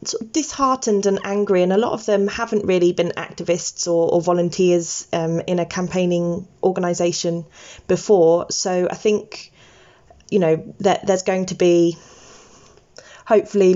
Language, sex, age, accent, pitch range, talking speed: English, female, 20-39, British, 170-200 Hz, 140 wpm